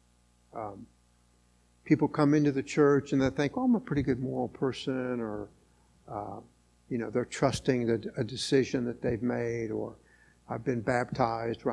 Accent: American